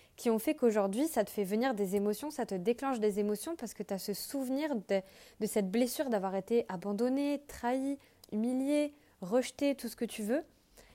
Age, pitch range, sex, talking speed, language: 20-39, 205-245 Hz, female, 195 wpm, French